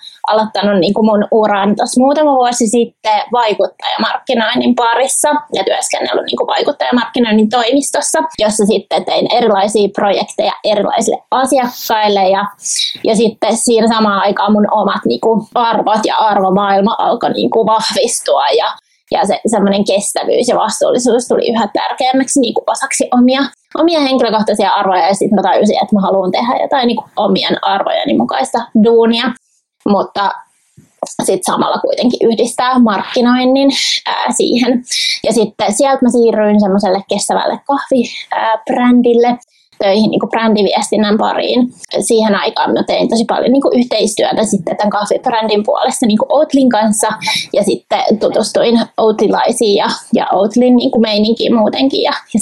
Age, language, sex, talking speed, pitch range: 20-39, Finnish, female, 120 wpm, 210-260 Hz